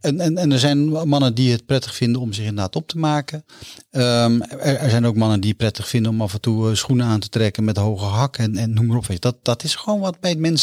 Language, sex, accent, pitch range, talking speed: Dutch, male, Dutch, 110-135 Hz, 280 wpm